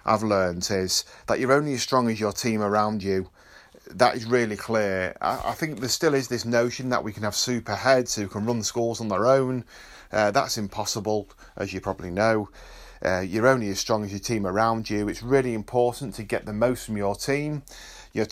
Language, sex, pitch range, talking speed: English, male, 100-120 Hz, 220 wpm